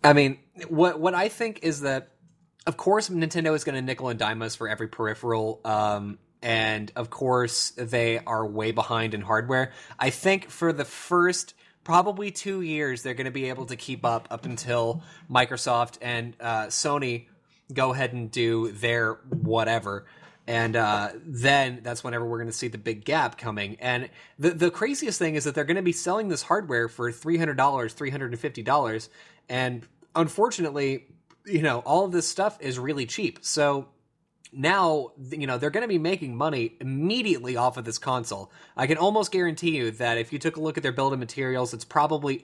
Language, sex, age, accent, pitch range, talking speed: English, male, 20-39, American, 115-160 Hz, 195 wpm